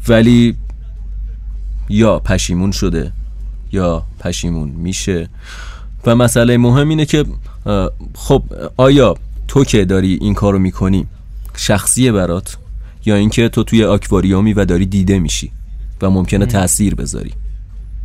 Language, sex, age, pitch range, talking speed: Persian, male, 30-49, 85-105 Hz, 115 wpm